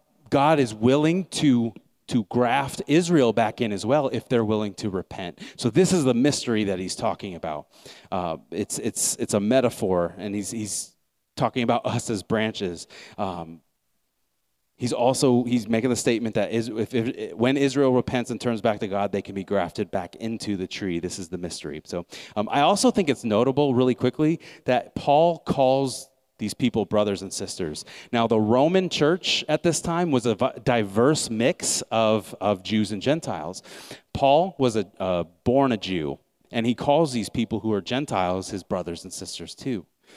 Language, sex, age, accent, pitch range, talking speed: English, male, 30-49, American, 105-145 Hz, 185 wpm